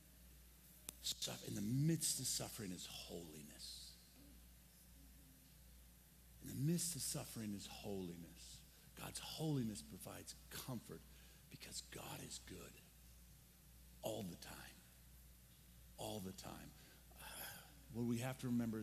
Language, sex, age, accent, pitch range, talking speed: English, male, 50-69, American, 105-170 Hz, 110 wpm